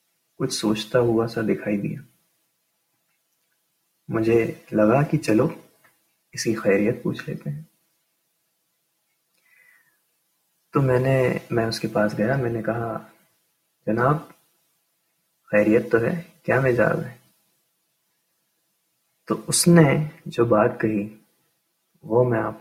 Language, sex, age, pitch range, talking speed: Urdu, male, 30-49, 125-165 Hz, 115 wpm